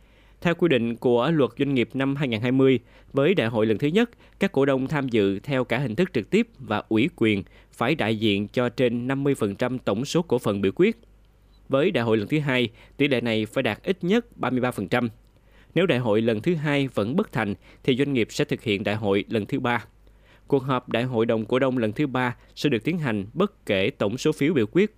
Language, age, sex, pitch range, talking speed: Vietnamese, 20-39, male, 110-145 Hz, 230 wpm